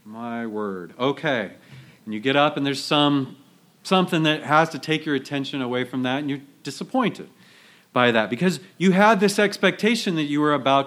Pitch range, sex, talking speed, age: 135-185 Hz, male, 190 wpm, 40-59